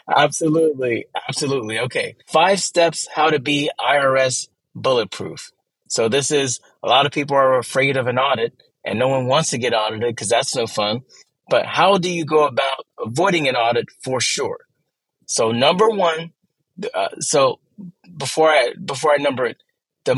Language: English